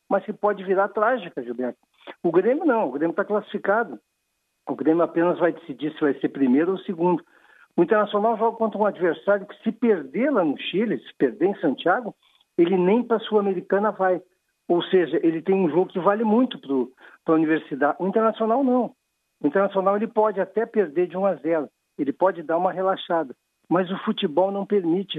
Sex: male